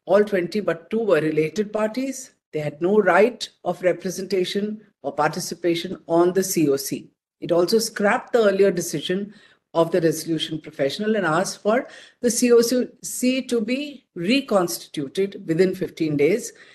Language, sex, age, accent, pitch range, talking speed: English, female, 50-69, Indian, 175-230 Hz, 140 wpm